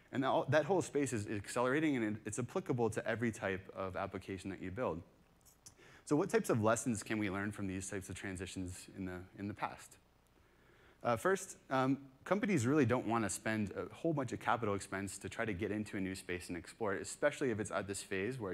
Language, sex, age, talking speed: English, male, 30-49, 215 wpm